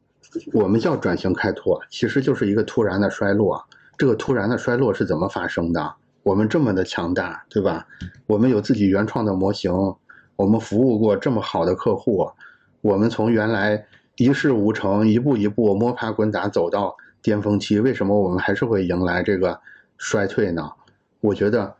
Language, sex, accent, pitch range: Chinese, male, native, 100-125 Hz